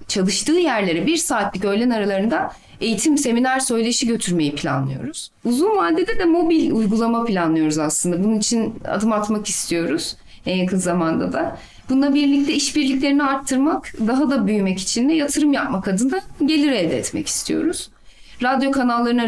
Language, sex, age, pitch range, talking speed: Turkish, female, 30-49, 200-275 Hz, 140 wpm